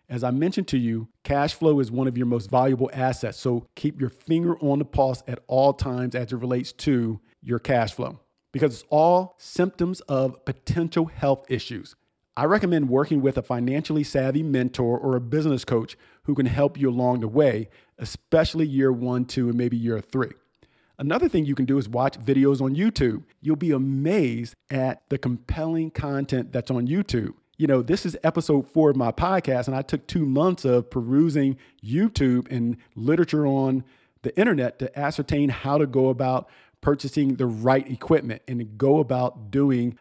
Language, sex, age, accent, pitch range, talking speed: English, male, 50-69, American, 125-150 Hz, 185 wpm